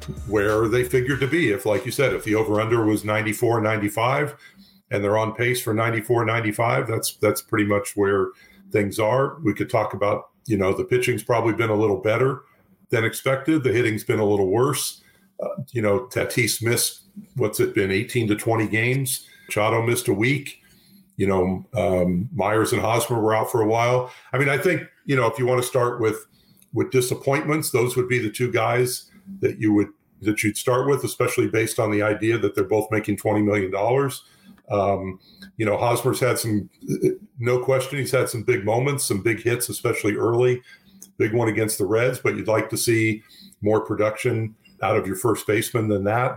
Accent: American